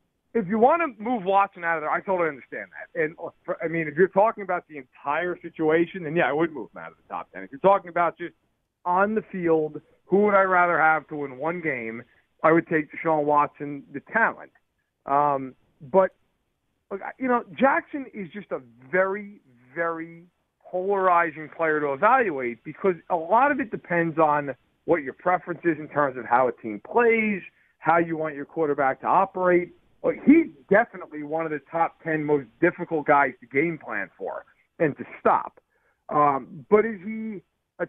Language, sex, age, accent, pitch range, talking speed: English, male, 40-59, American, 155-210 Hz, 190 wpm